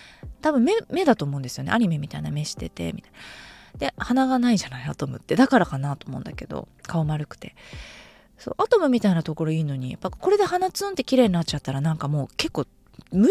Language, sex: Japanese, female